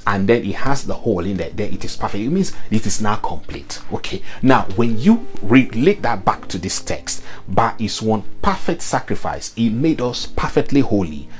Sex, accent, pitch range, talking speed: male, Nigerian, 95-125 Hz, 200 wpm